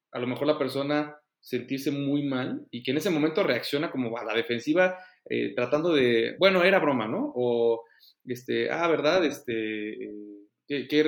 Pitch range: 120-150 Hz